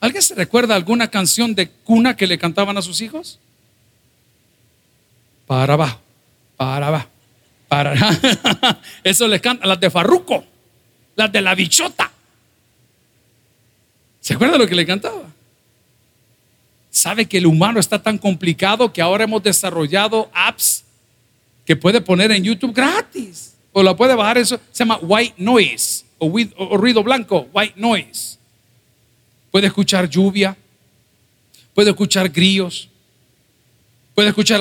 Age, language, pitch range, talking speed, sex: 50-69, Spanish, 135-215 Hz, 130 wpm, male